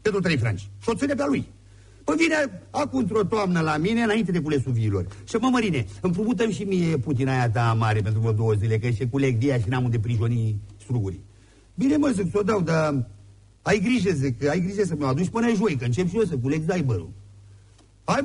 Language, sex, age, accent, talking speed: English, male, 50-69, Romanian, 220 wpm